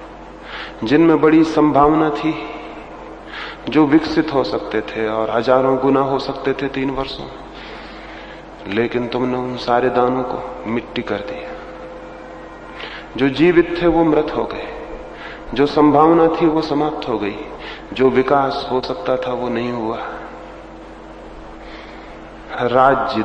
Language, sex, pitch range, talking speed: Hindi, male, 120-155 Hz, 130 wpm